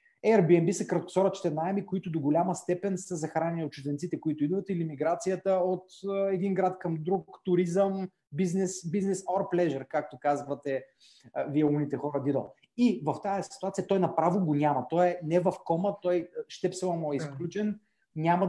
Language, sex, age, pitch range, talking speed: Bulgarian, male, 30-49, 165-195 Hz, 165 wpm